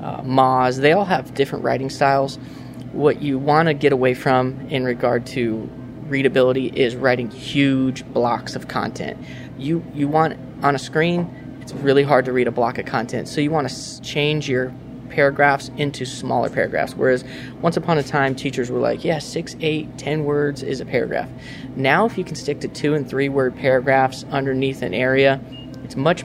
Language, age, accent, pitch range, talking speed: English, 20-39, American, 130-150 Hz, 180 wpm